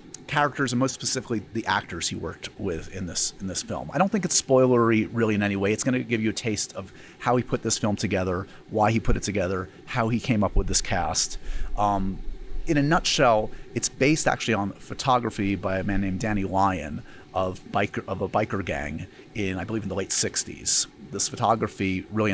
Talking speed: 215 wpm